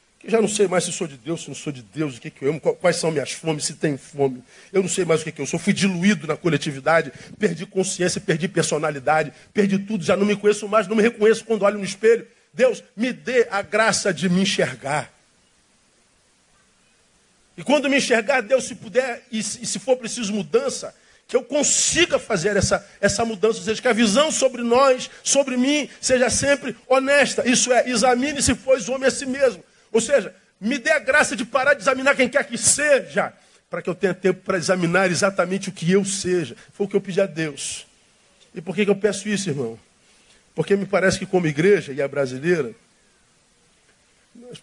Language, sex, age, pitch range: Portuguese, male, 50-69, 160-230 Hz